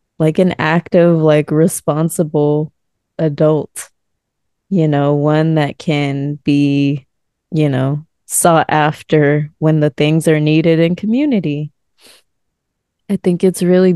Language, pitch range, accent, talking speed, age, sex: English, 150-175 Hz, American, 115 wpm, 20-39, female